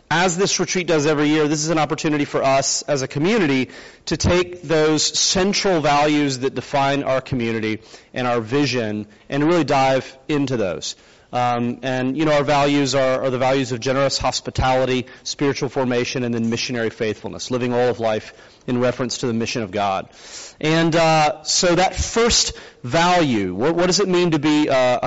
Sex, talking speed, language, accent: male, 180 wpm, English, American